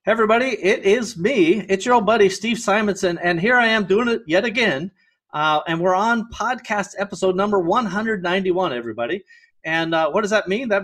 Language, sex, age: English, male, 30-49